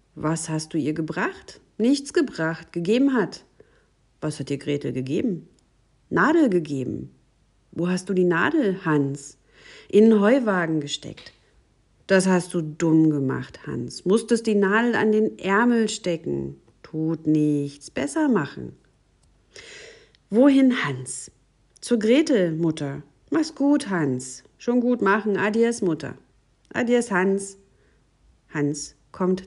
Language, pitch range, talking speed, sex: German, 150-220 Hz, 120 wpm, female